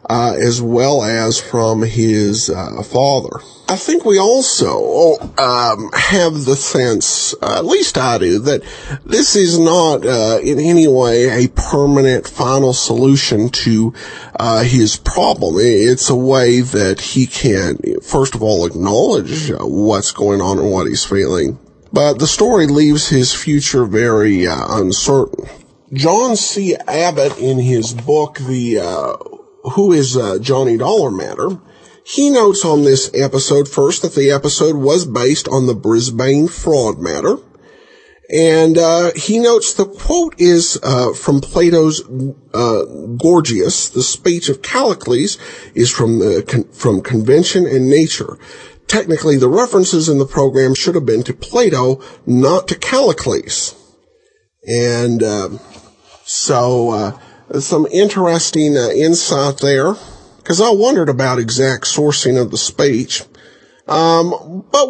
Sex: male